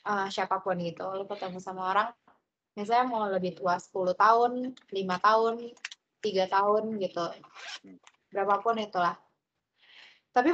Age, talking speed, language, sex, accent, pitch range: 20-39, 120 wpm, Indonesian, female, native, 195-235 Hz